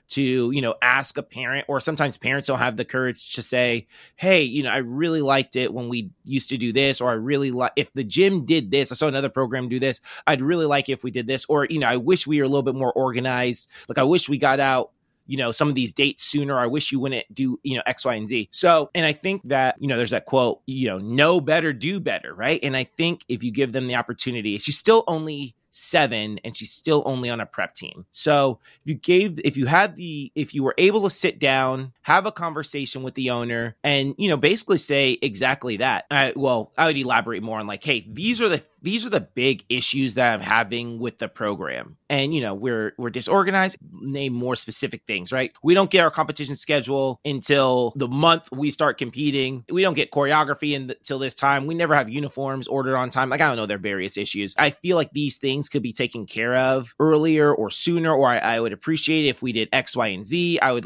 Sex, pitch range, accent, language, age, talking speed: male, 125-155 Hz, American, English, 20-39, 245 wpm